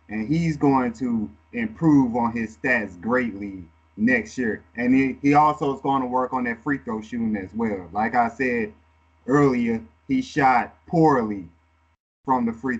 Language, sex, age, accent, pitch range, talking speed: English, male, 20-39, American, 115-150 Hz, 170 wpm